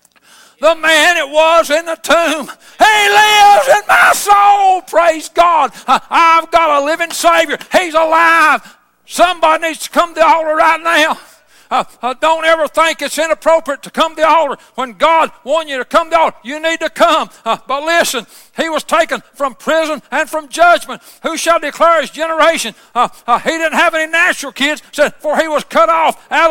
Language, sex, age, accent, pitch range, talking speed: English, male, 60-79, American, 290-330 Hz, 190 wpm